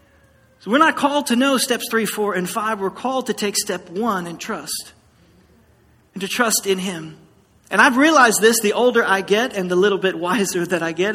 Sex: male